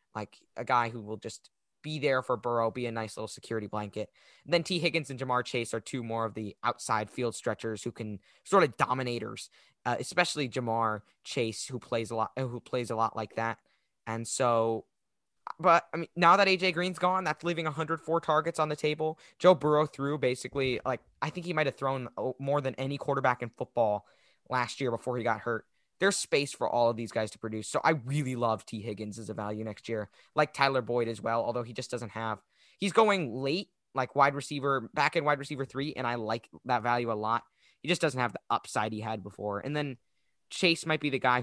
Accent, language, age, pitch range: American, English, 10-29, 110-140 Hz